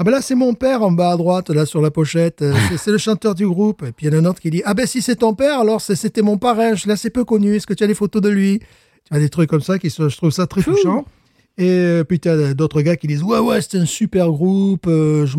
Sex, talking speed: male, 325 wpm